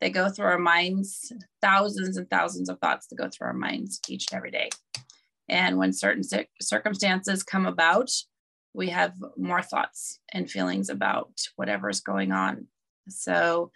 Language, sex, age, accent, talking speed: English, female, 30-49, American, 155 wpm